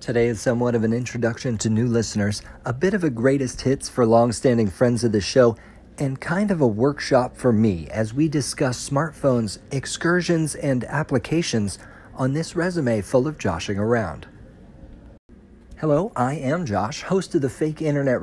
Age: 40-59